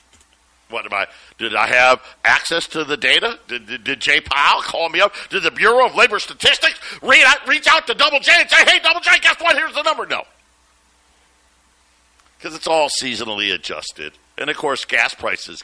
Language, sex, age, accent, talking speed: English, male, 50-69, American, 200 wpm